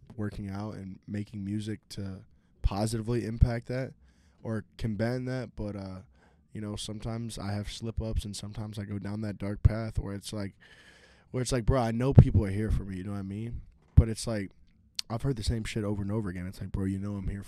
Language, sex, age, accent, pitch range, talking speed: English, male, 10-29, American, 95-115 Hz, 230 wpm